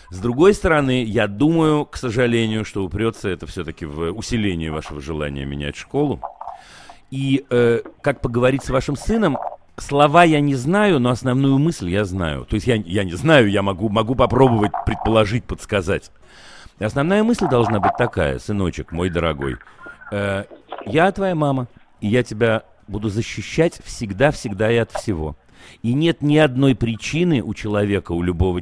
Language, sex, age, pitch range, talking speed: Russian, male, 40-59, 95-135 Hz, 155 wpm